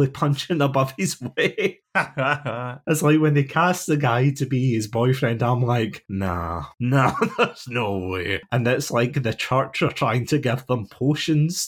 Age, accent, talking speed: 20-39, British, 170 wpm